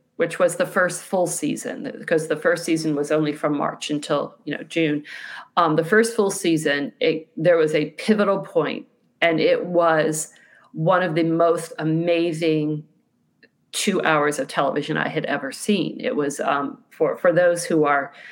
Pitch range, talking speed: 160-195 Hz, 175 wpm